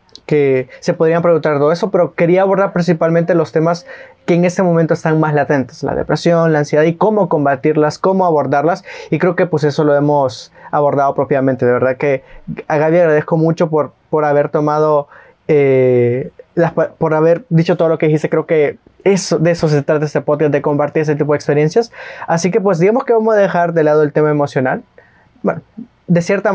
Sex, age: male, 20-39